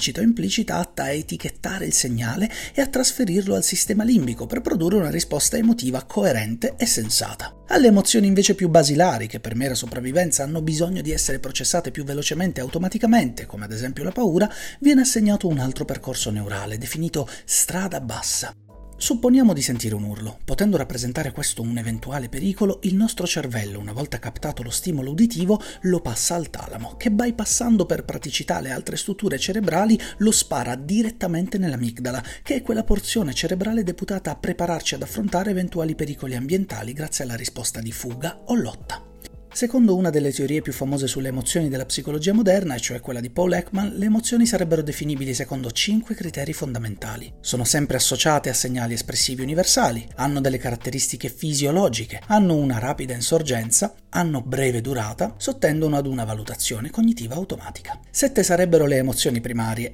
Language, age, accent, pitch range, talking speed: Italian, 30-49, native, 125-190 Hz, 165 wpm